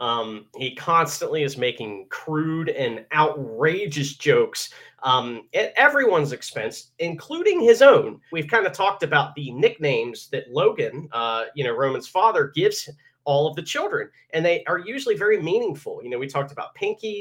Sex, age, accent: male, 30-49, American